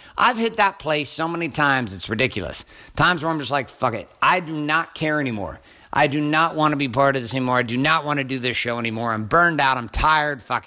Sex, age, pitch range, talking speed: male, 50-69, 120-175 Hz, 260 wpm